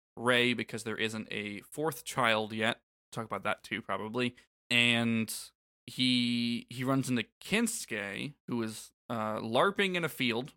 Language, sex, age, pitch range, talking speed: English, male, 20-39, 110-130 Hz, 150 wpm